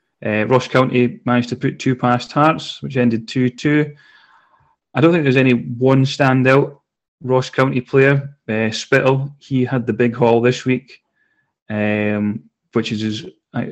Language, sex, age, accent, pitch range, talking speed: English, male, 30-49, British, 115-130 Hz, 155 wpm